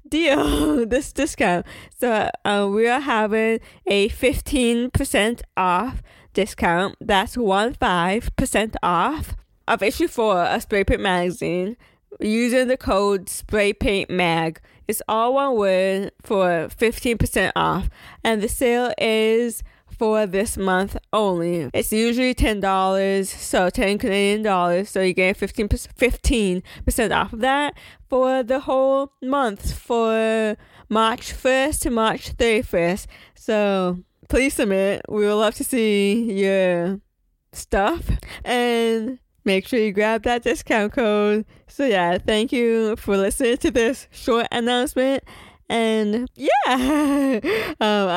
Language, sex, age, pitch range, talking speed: English, female, 20-39, 195-250 Hz, 125 wpm